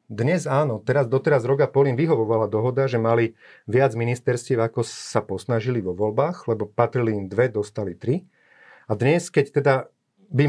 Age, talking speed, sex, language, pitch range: 30-49, 160 wpm, male, Slovak, 110-135 Hz